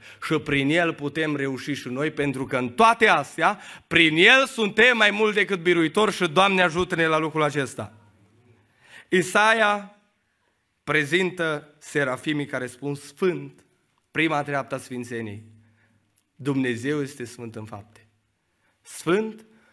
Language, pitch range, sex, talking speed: Romanian, 115-170 Hz, male, 120 wpm